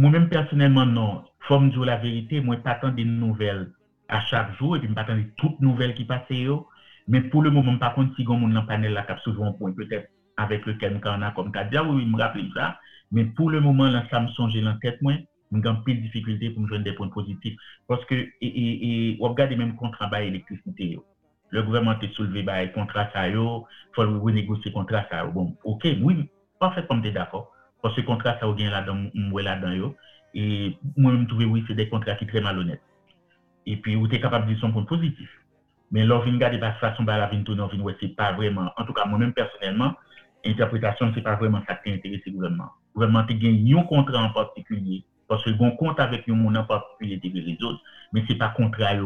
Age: 50-69